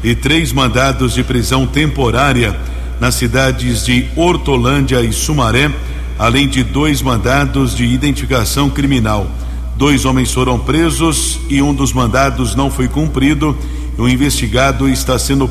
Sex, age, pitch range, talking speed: male, 60-79, 115-140 Hz, 135 wpm